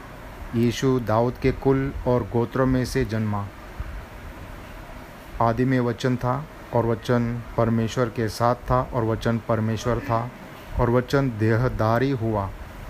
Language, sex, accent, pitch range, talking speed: Hindi, male, native, 110-130 Hz, 125 wpm